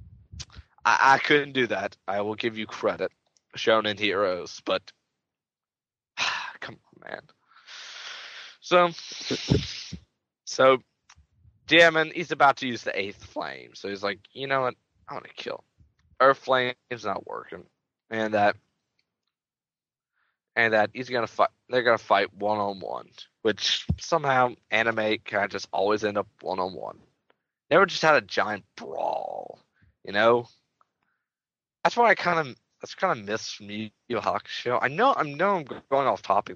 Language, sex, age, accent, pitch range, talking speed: English, male, 20-39, American, 105-135 Hz, 155 wpm